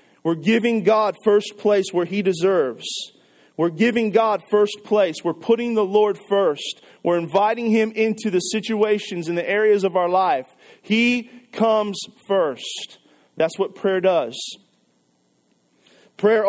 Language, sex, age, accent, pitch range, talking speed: English, male, 40-59, American, 160-210 Hz, 140 wpm